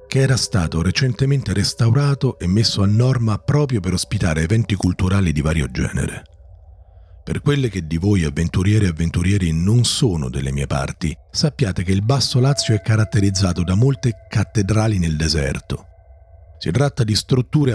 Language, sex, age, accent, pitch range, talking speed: Italian, male, 40-59, native, 85-120 Hz, 155 wpm